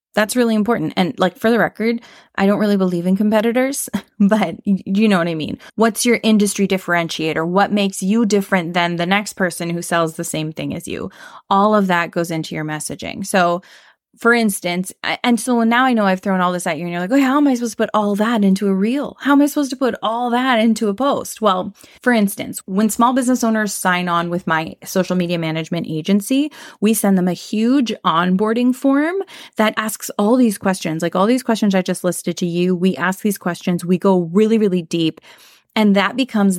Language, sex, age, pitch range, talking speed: English, female, 20-39, 175-220 Hz, 220 wpm